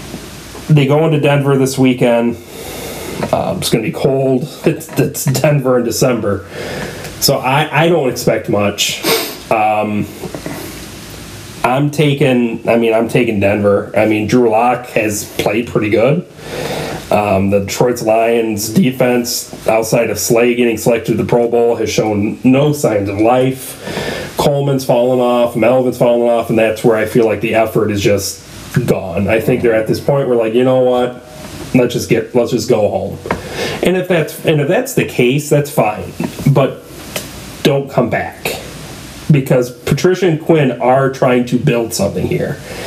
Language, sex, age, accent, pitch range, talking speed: English, male, 30-49, American, 115-145 Hz, 165 wpm